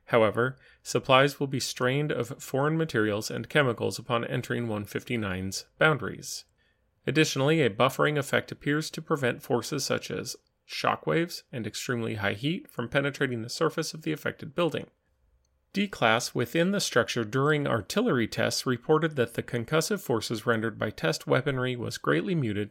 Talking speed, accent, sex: 150 wpm, American, male